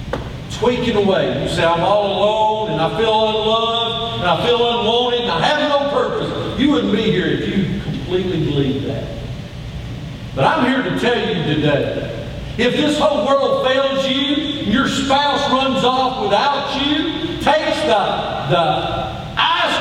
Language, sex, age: English, male, 50-69